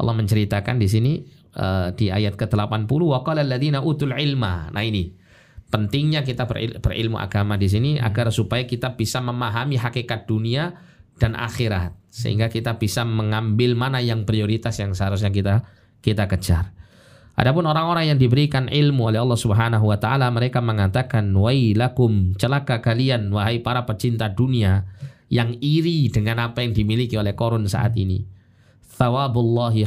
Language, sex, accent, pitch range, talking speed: Indonesian, male, native, 105-125 Hz, 145 wpm